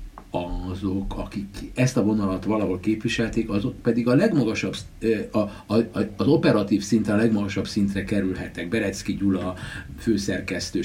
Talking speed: 115 wpm